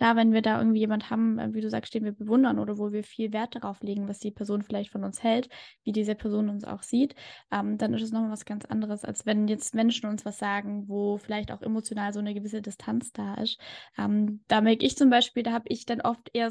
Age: 10-29